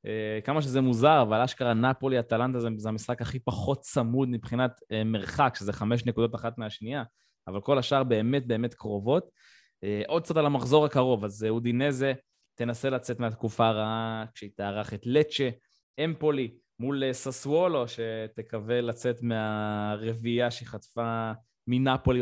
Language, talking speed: Hebrew, 145 wpm